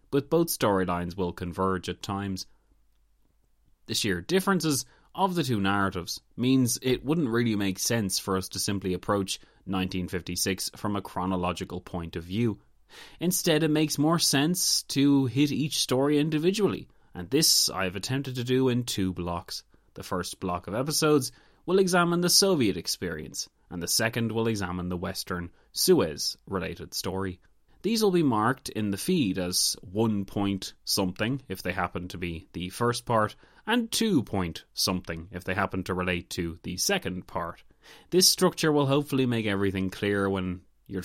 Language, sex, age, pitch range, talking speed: English, male, 30-49, 90-140 Hz, 165 wpm